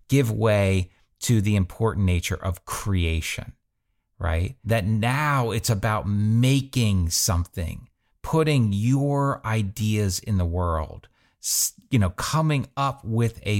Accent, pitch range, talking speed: American, 105-145 Hz, 120 wpm